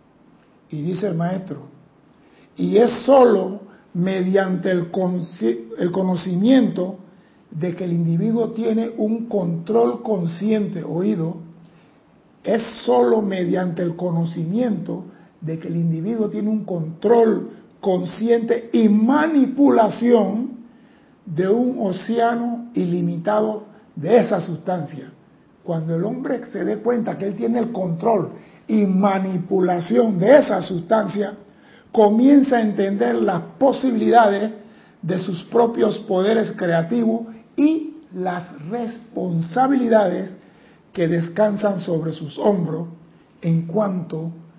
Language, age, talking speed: Spanish, 60-79, 105 wpm